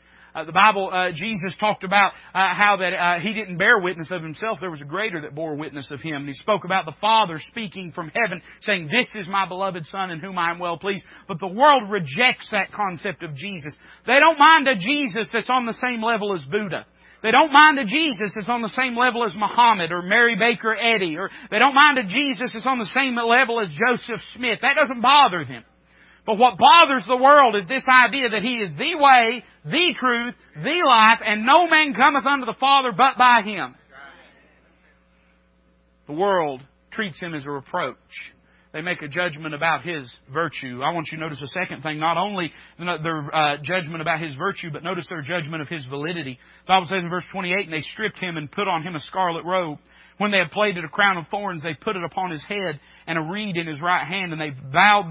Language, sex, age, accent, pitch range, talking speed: English, male, 40-59, American, 160-230 Hz, 225 wpm